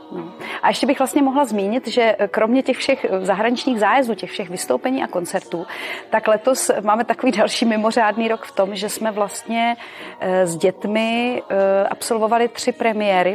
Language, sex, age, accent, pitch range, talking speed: Czech, female, 30-49, native, 185-215 Hz, 155 wpm